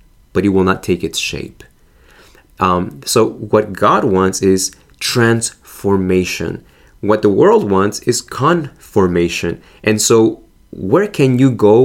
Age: 30-49